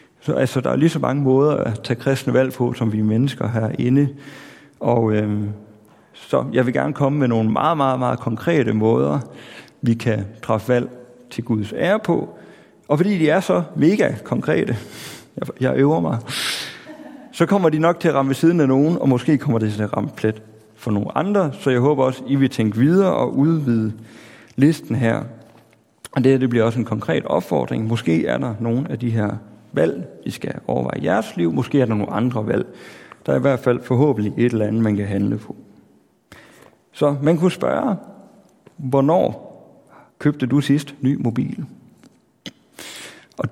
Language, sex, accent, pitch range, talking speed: Danish, male, native, 110-140 Hz, 185 wpm